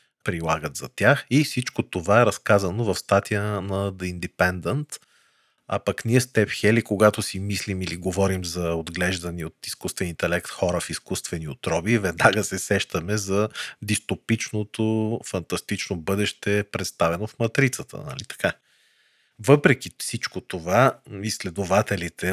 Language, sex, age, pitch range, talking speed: Bulgarian, male, 40-59, 90-110 Hz, 130 wpm